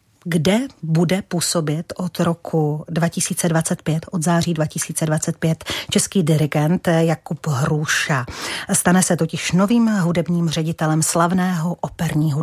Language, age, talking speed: Czech, 40-59, 100 wpm